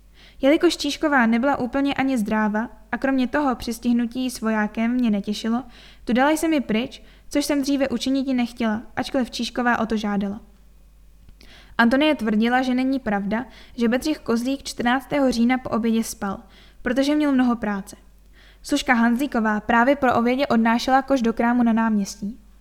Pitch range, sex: 225-265 Hz, female